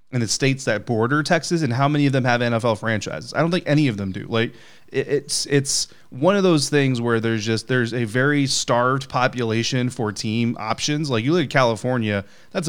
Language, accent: English, American